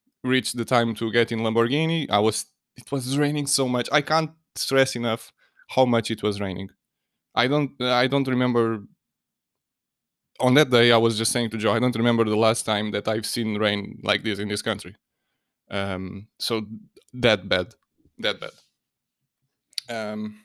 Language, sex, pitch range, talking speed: English, male, 105-135 Hz, 175 wpm